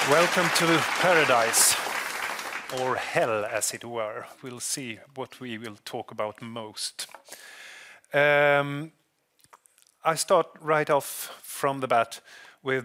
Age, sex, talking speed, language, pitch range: 30-49, male, 115 wpm, English, 125-155 Hz